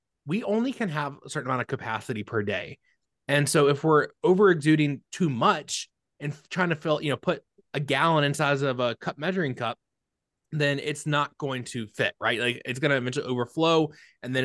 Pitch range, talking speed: 120-165 Hz, 205 wpm